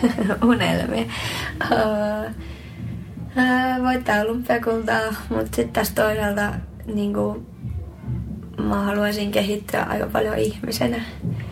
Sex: female